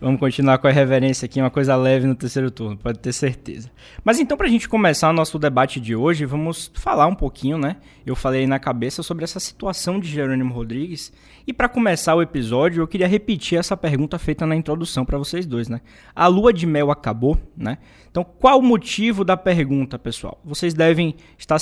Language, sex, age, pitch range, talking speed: Portuguese, male, 20-39, 130-165 Hz, 210 wpm